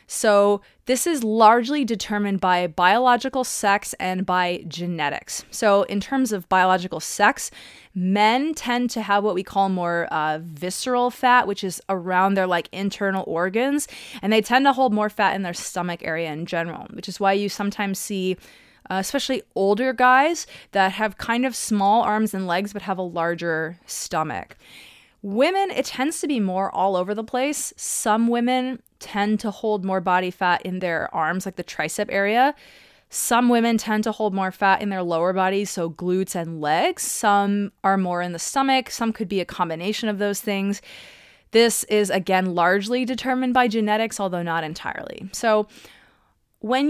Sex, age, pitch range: female, 20-39, 180-230 Hz